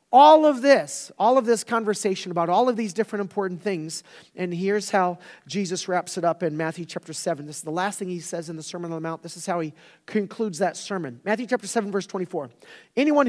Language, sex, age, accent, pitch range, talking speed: English, male, 40-59, American, 165-215 Hz, 230 wpm